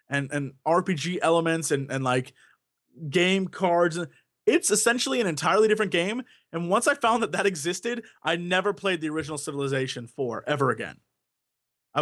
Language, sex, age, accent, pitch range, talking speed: English, male, 20-39, American, 145-190 Hz, 160 wpm